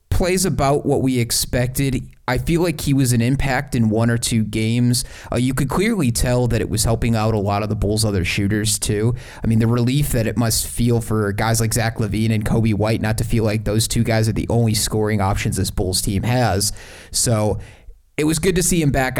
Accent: American